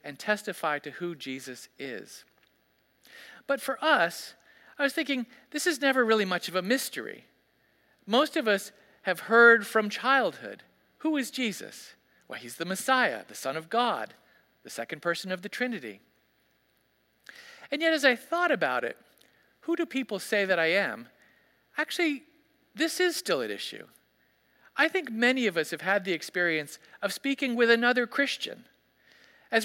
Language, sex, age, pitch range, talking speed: English, male, 50-69, 190-275 Hz, 160 wpm